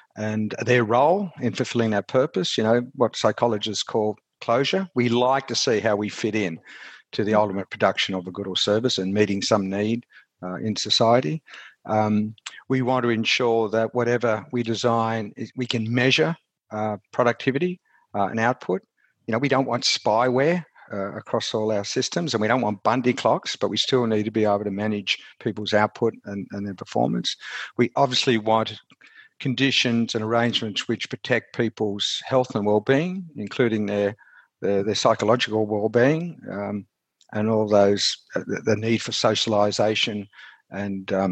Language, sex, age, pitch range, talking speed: English, male, 50-69, 105-125 Hz, 165 wpm